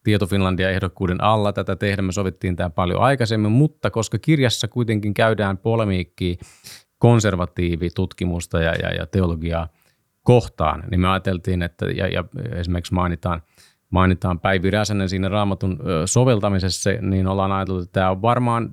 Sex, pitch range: male, 90-110 Hz